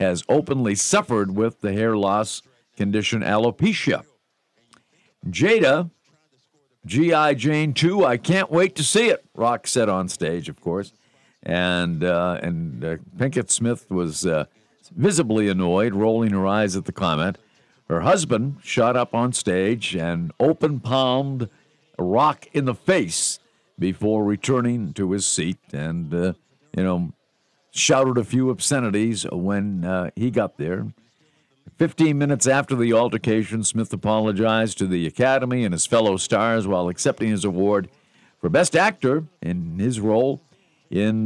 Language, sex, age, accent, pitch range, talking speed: English, male, 50-69, American, 95-130 Hz, 140 wpm